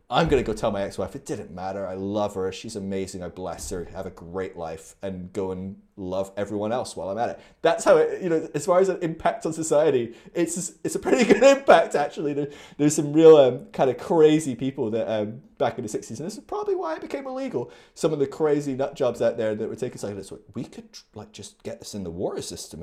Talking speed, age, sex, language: 255 wpm, 30-49, male, English